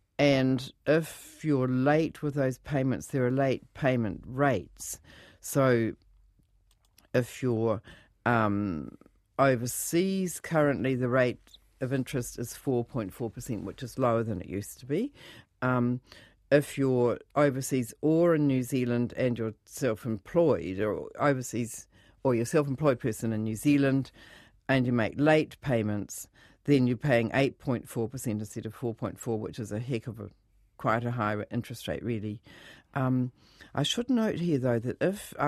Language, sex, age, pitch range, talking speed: English, female, 50-69, 110-140 Hz, 155 wpm